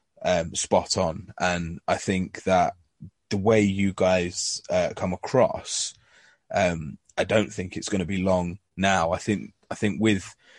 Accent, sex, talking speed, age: British, male, 165 wpm, 20-39